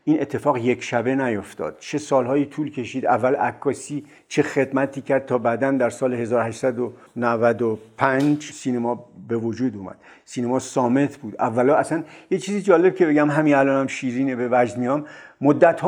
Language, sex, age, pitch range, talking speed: Persian, male, 50-69, 120-145 Hz, 150 wpm